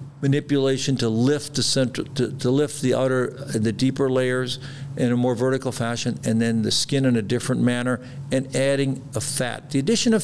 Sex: male